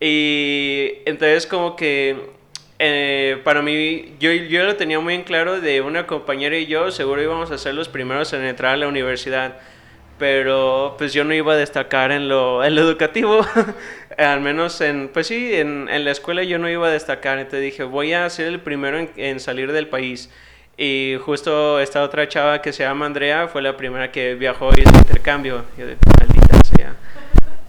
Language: Spanish